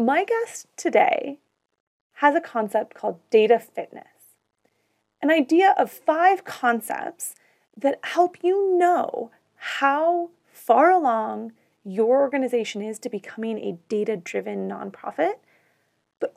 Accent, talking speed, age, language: American, 115 wpm, 30-49, English